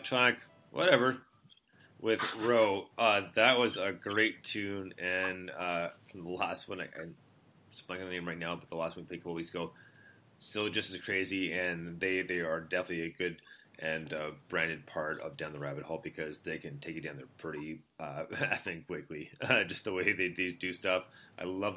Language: English